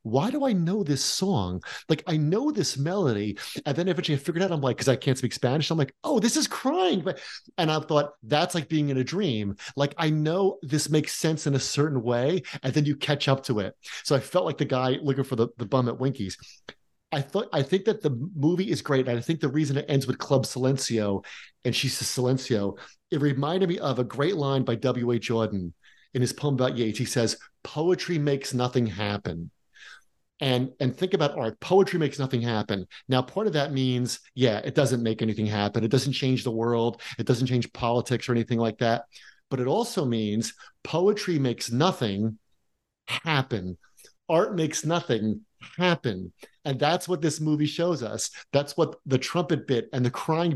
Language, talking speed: English, 210 wpm